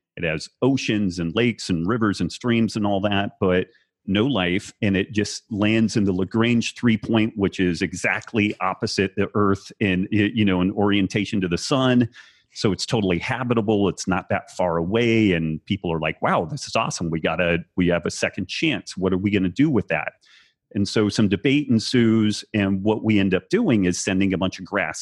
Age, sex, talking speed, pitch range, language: 40-59, male, 210 wpm, 90-110 Hz, English